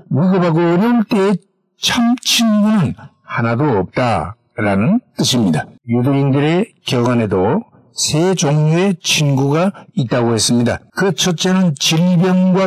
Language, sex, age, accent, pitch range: Korean, male, 60-79, native, 135-195 Hz